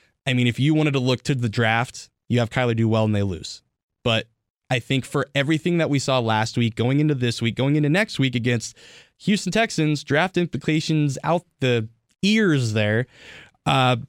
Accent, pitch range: American, 115-150 Hz